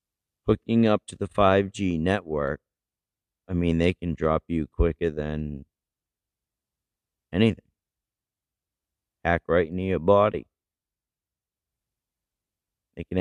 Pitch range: 85-105 Hz